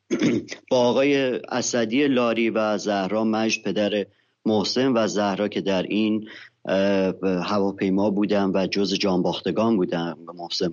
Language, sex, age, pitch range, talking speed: English, male, 40-59, 95-120 Hz, 115 wpm